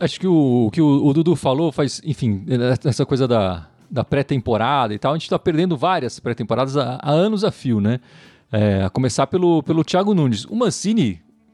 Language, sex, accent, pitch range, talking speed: Portuguese, male, Brazilian, 135-220 Hz, 200 wpm